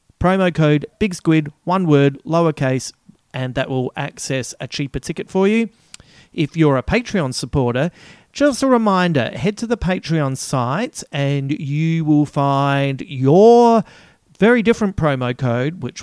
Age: 40-59